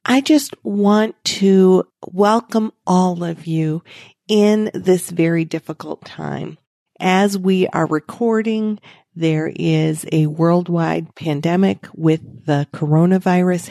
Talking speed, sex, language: 110 wpm, female, English